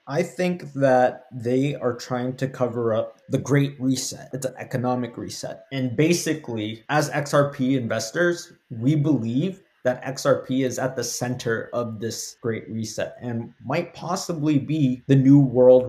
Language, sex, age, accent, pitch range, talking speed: English, male, 20-39, American, 115-140 Hz, 150 wpm